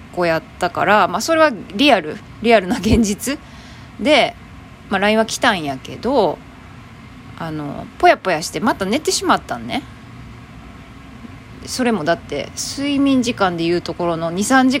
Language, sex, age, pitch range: Japanese, female, 20-39, 165-260 Hz